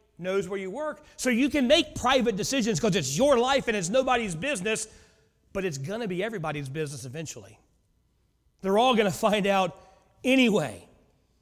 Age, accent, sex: 40-59, American, male